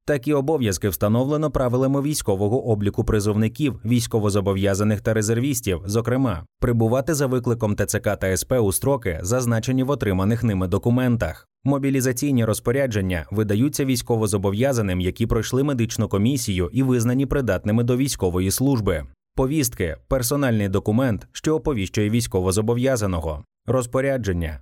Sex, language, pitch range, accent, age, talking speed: male, Ukrainian, 100-130 Hz, native, 20-39, 110 wpm